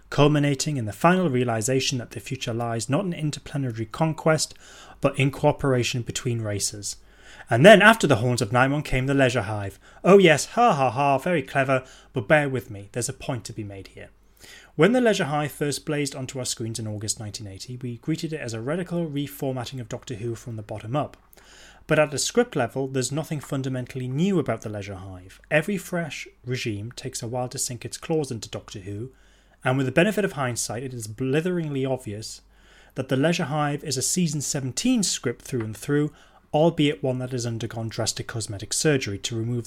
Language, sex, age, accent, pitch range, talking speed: English, male, 30-49, British, 115-155 Hz, 200 wpm